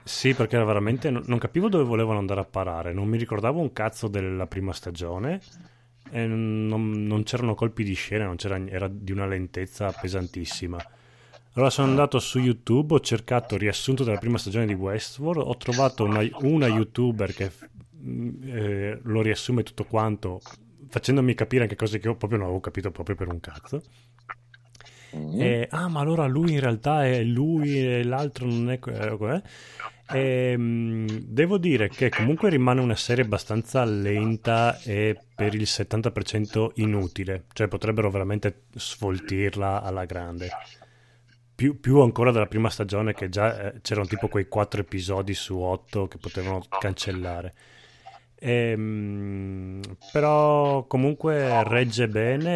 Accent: native